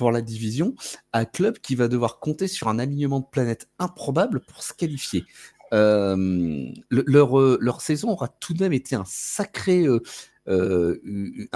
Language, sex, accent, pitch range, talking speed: French, male, French, 110-155 Hz, 165 wpm